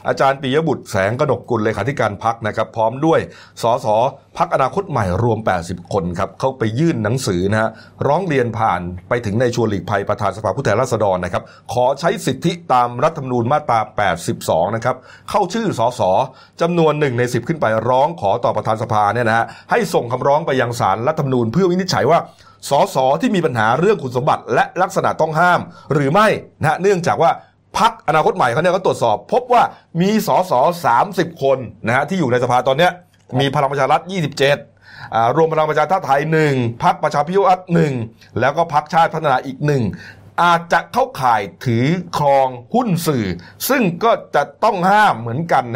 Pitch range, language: 115-165 Hz, Thai